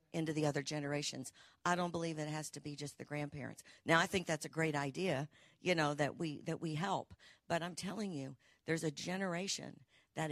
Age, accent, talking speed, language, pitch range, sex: 50-69, American, 210 wpm, English, 145-180 Hz, female